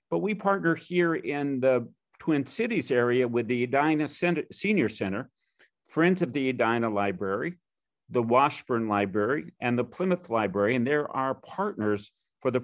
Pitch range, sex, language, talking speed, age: 120-150 Hz, male, English, 150 wpm, 50-69